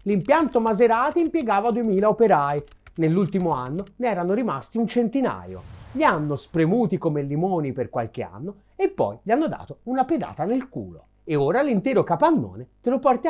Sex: male